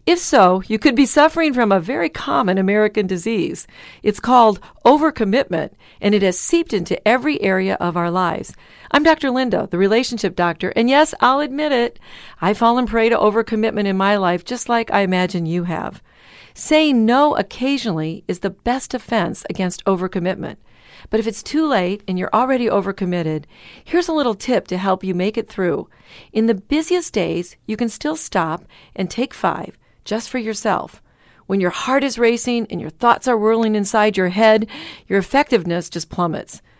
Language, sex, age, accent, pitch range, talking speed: English, female, 50-69, American, 195-255 Hz, 180 wpm